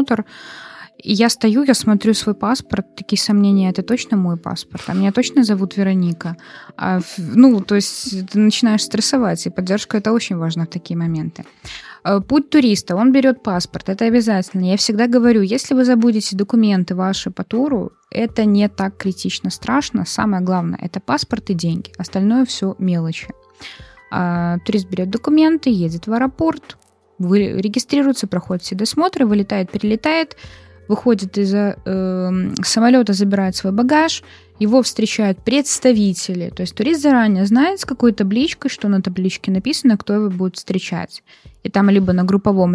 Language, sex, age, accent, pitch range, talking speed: Russian, female, 20-39, native, 185-240 Hz, 150 wpm